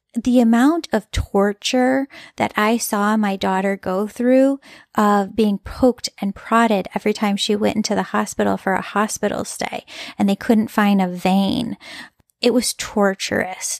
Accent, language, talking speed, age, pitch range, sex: American, English, 155 wpm, 10-29, 210-245 Hz, female